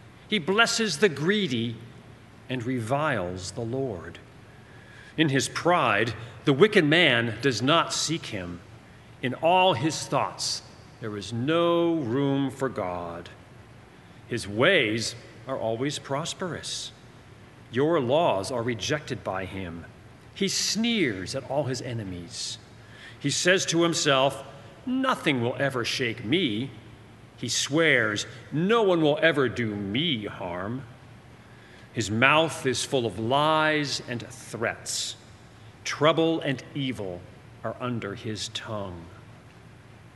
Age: 40-59